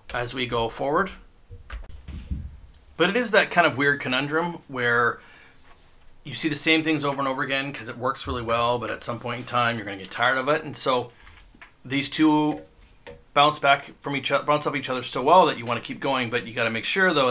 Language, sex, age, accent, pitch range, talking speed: English, male, 40-59, American, 120-150 Hz, 230 wpm